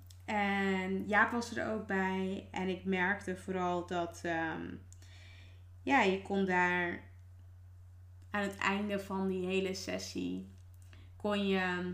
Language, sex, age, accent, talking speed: Dutch, female, 20-39, Dutch, 110 wpm